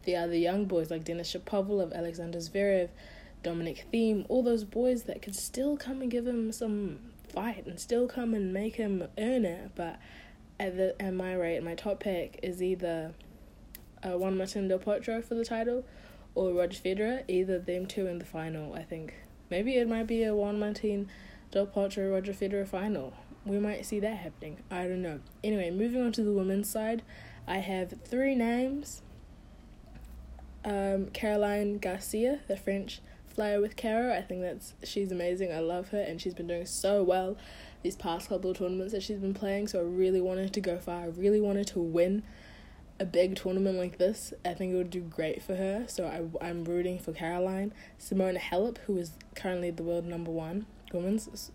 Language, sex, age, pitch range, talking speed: English, female, 20-39, 175-210 Hz, 190 wpm